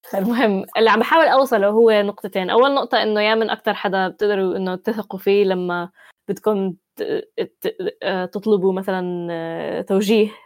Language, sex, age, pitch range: Arabic, female, 10-29, 185-210 Hz